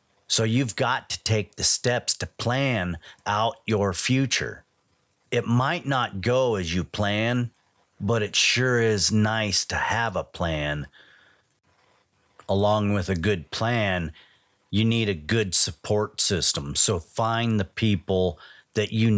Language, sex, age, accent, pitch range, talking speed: English, male, 40-59, American, 95-115 Hz, 140 wpm